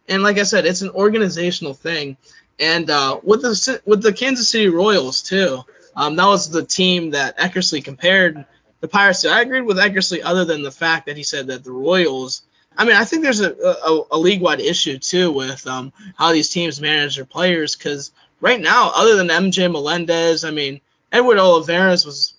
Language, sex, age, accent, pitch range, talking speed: English, male, 20-39, American, 150-185 Hz, 200 wpm